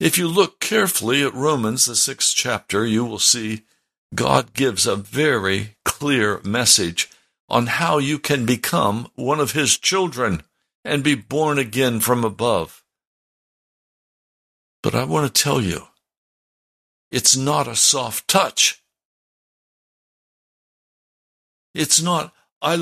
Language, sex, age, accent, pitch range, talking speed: English, male, 60-79, American, 110-170 Hz, 125 wpm